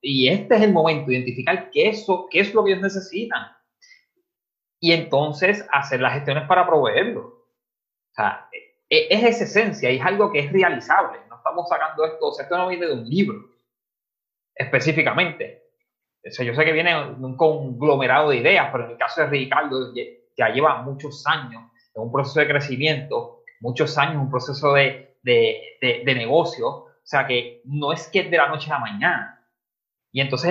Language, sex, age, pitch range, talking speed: Spanish, male, 30-49, 140-210 Hz, 185 wpm